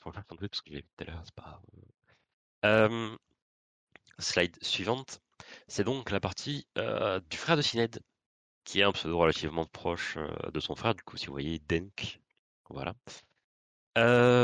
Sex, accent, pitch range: male, French, 80-110 Hz